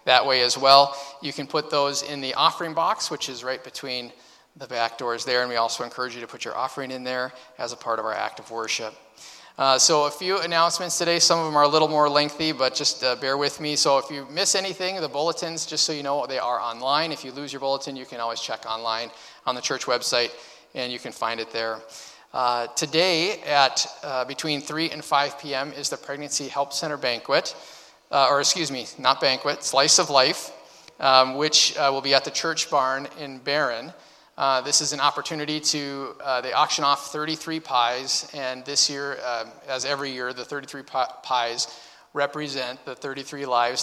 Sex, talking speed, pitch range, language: male, 210 wpm, 125-150 Hz, English